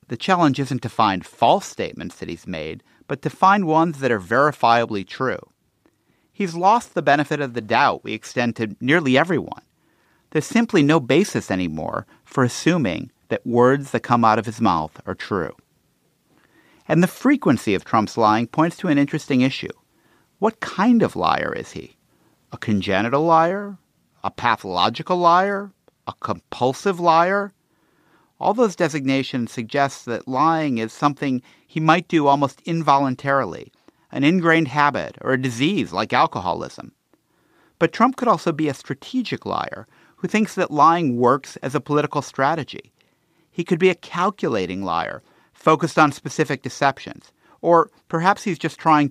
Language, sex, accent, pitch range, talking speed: English, male, American, 125-170 Hz, 155 wpm